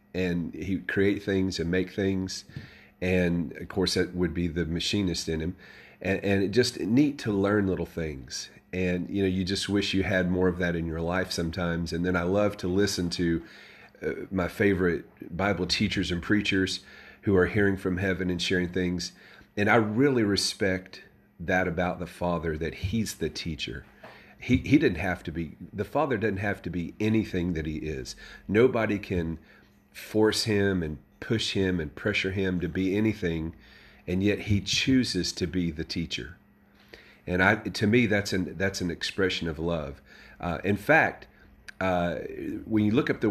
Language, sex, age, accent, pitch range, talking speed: English, male, 40-59, American, 90-100 Hz, 185 wpm